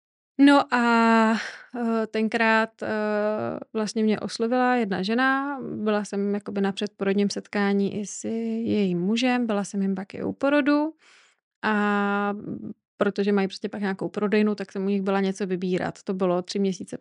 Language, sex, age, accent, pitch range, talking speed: Czech, female, 20-39, native, 205-240 Hz, 150 wpm